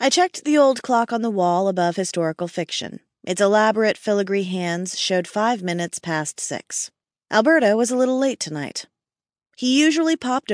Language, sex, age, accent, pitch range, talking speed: English, female, 30-49, American, 170-235 Hz, 165 wpm